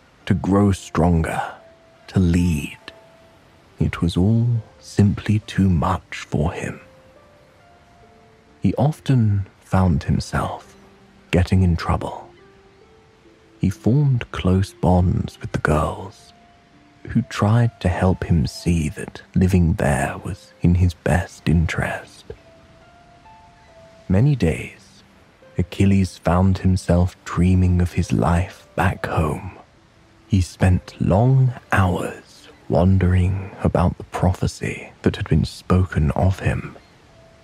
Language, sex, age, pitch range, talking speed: English, male, 30-49, 85-105 Hz, 105 wpm